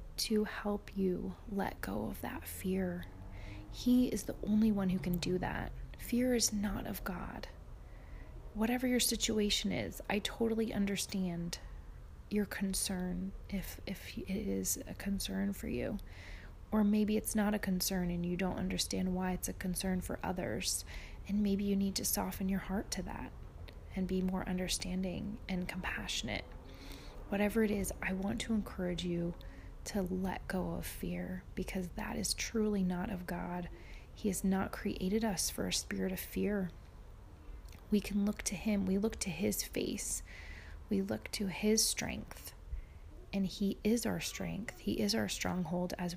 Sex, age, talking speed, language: female, 30-49, 165 wpm, English